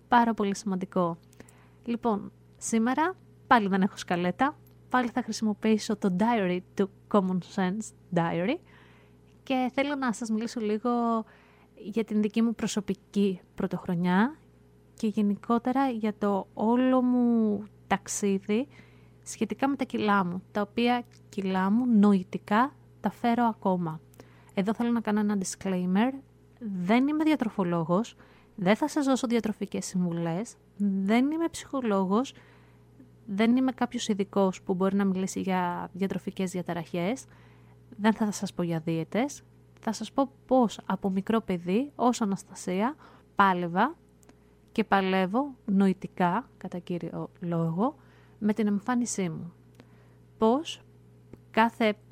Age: 20-39